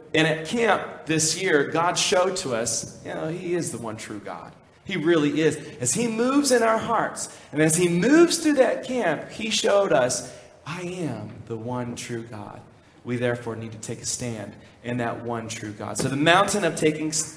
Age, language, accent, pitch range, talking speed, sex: 30-49, English, American, 120-160 Hz, 205 wpm, male